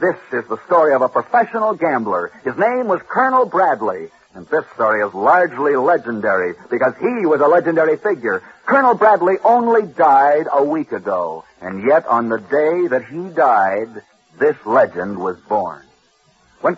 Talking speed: 160 wpm